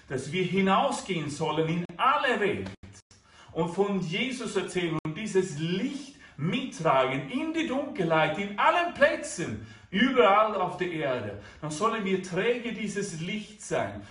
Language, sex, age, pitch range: German, male, 40-59, 155-210 Hz